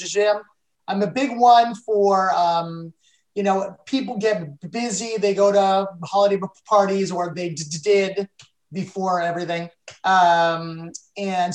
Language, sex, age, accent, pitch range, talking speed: English, male, 30-49, American, 185-215 Hz, 125 wpm